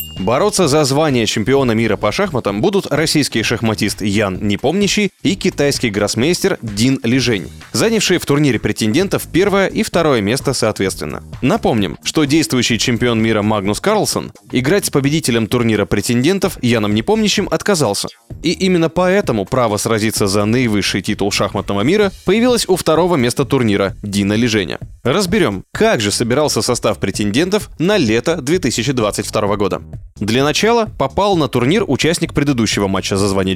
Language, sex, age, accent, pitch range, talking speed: Russian, male, 20-39, native, 105-165 Hz, 145 wpm